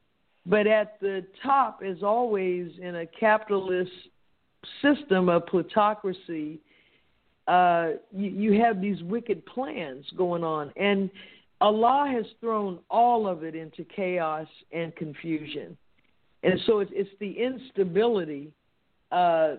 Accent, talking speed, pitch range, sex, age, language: American, 120 wpm, 155-200 Hz, female, 50-69, English